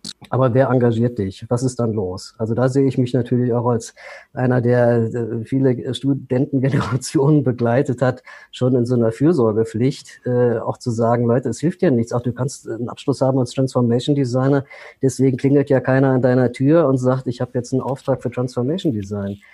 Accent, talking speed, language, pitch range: German, 180 wpm, German, 115-135 Hz